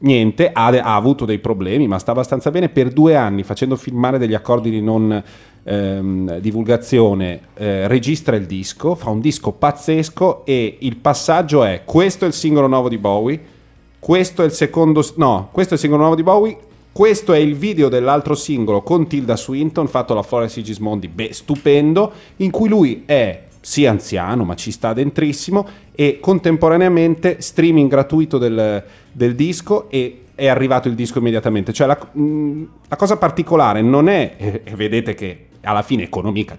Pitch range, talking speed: 110-150 Hz, 170 wpm